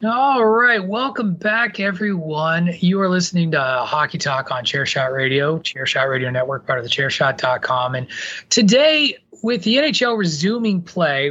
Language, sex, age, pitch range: English, male, 30-49, 150-210 Hz